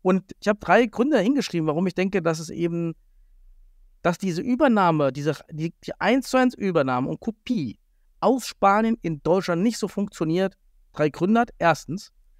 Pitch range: 145-220 Hz